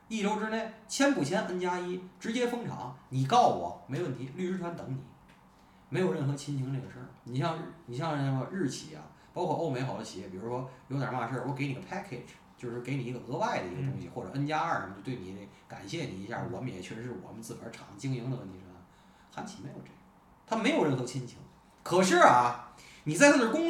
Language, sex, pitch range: Chinese, male, 120-185 Hz